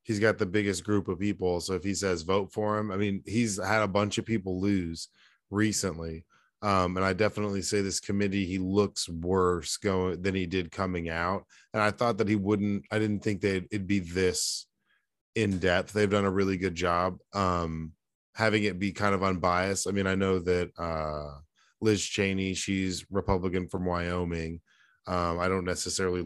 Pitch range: 90-105 Hz